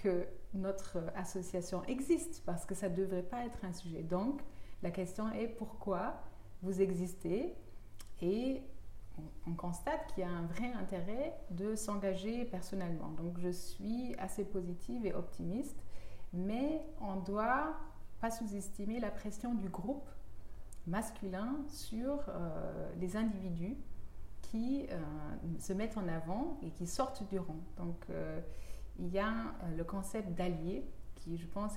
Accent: French